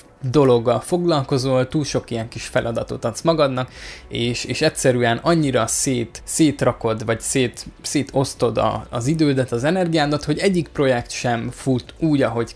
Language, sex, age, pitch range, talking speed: Hungarian, male, 20-39, 120-150 Hz, 140 wpm